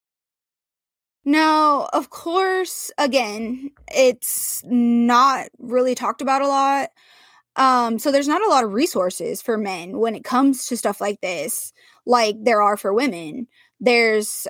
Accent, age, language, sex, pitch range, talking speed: American, 20-39, English, female, 225-290 Hz, 140 wpm